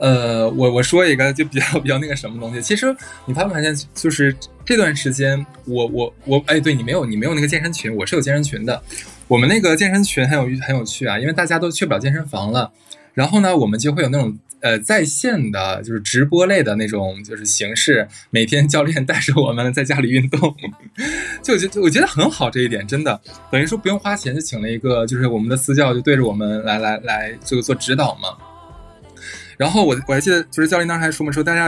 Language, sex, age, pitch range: Chinese, male, 20-39, 120-155 Hz